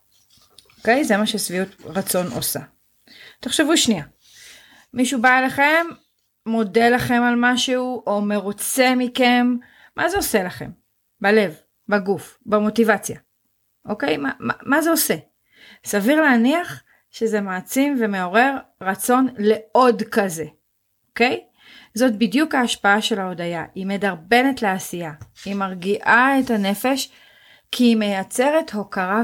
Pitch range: 190-255 Hz